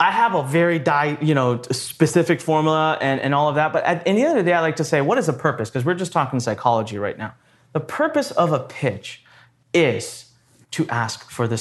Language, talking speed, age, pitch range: English, 240 wpm, 30-49, 130-200 Hz